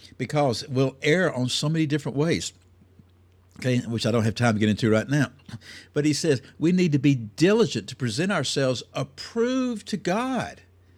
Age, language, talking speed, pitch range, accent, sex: 60-79, English, 180 wpm, 95-145 Hz, American, male